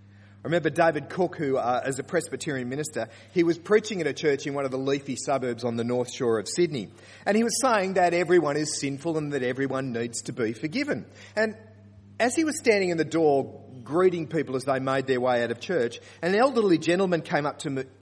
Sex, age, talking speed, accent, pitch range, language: male, 40-59, 225 wpm, Australian, 110-175 Hz, English